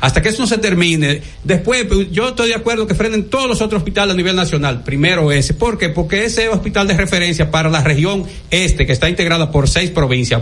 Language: Spanish